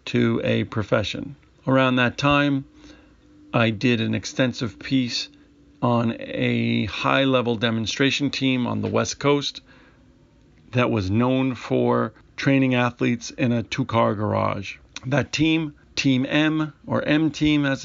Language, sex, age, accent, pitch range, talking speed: English, male, 50-69, American, 115-135 Hz, 125 wpm